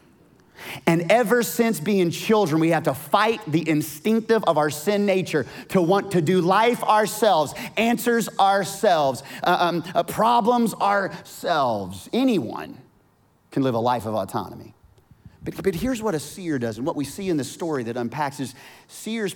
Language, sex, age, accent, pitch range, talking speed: English, male, 30-49, American, 120-180 Hz, 165 wpm